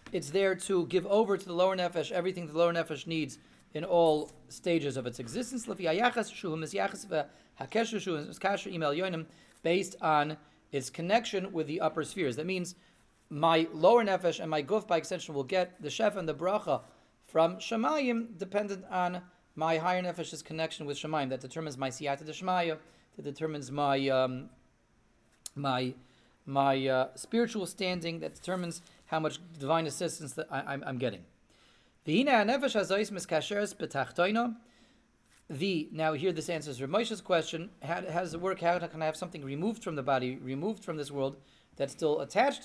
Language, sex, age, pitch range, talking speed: English, male, 30-49, 145-190 Hz, 155 wpm